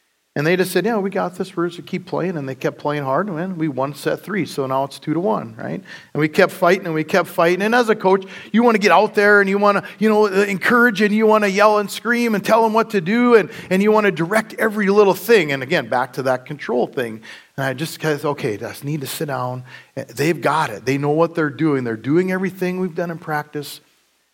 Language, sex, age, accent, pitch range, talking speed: English, male, 40-59, American, 145-195 Hz, 275 wpm